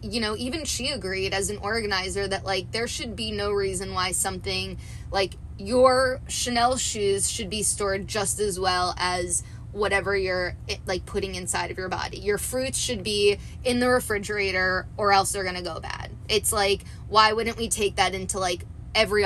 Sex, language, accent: female, English, American